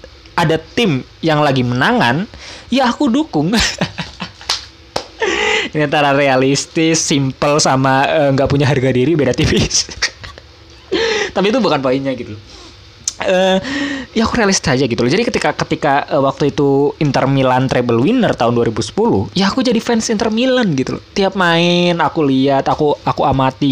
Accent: native